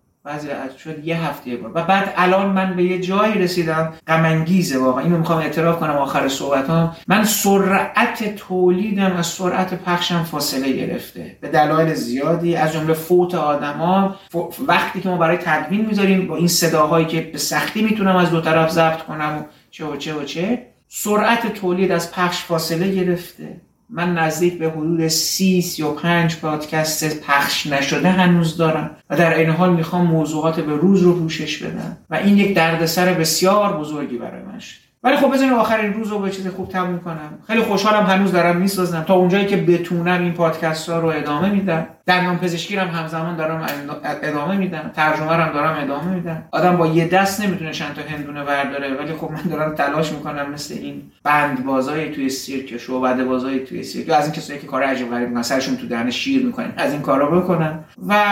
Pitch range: 155-190 Hz